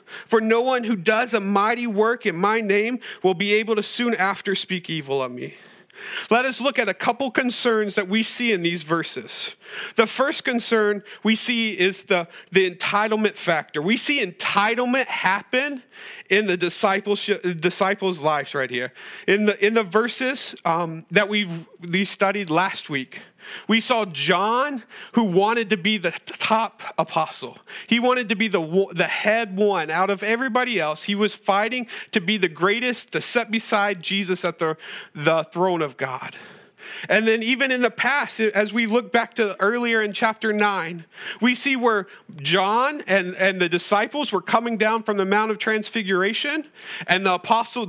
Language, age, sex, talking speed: English, 40-59, male, 175 wpm